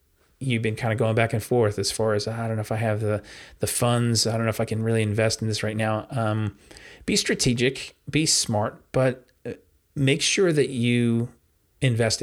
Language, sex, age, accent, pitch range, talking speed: English, male, 30-49, American, 100-120 Hz, 210 wpm